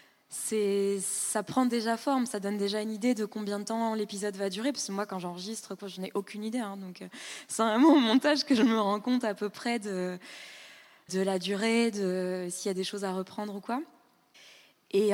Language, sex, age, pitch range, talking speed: French, female, 20-39, 185-225 Hz, 225 wpm